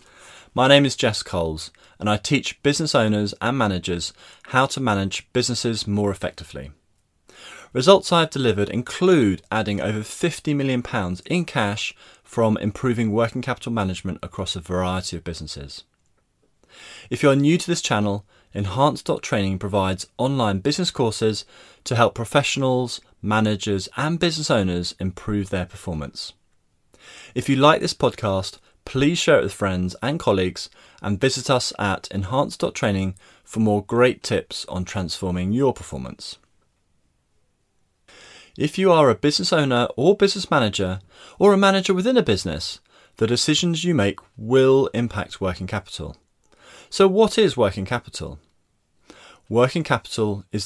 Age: 20-39